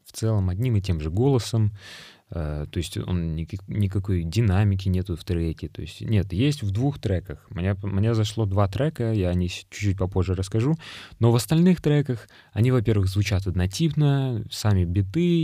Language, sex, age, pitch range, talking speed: Russian, male, 20-39, 90-115 Hz, 160 wpm